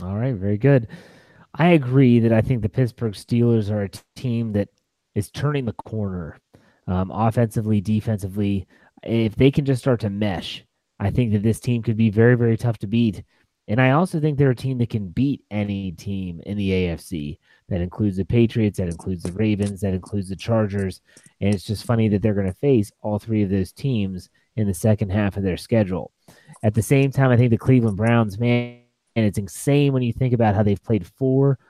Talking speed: 210 wpm